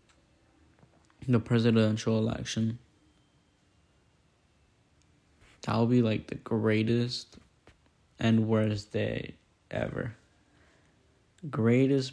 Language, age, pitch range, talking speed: English, 10-29, 105-115 Hz, 70 wpm